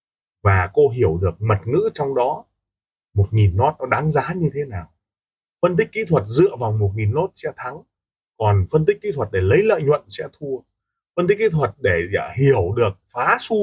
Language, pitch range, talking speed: Vietnamese, 100-160 Hz, 210 wpm